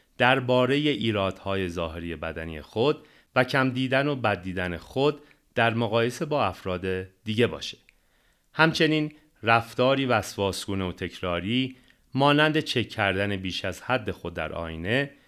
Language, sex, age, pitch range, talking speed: Persian, male, 30-49, 90-130 Hz, 135 wpm